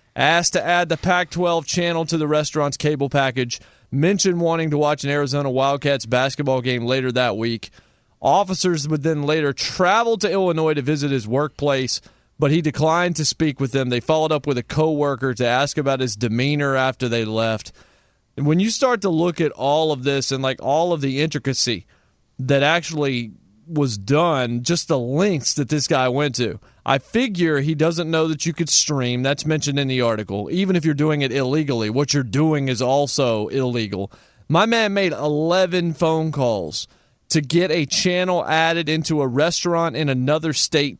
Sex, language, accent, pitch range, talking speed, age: male, English, American, 130-165 Hz, 185 wpm, 30-49